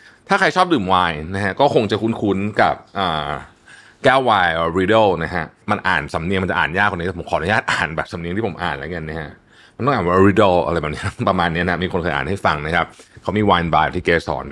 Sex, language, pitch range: male, Thai, 90-125 Hz